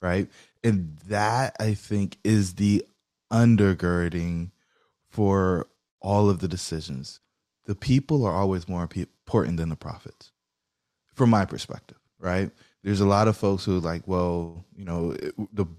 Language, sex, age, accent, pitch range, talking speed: English, male, 20-39, American, 90-105 Hz, 140 wpm